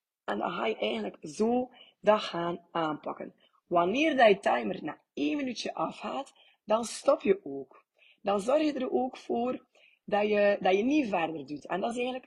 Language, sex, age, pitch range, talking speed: Dutch, female, 20-39, 185-250 Hz, 180 wpm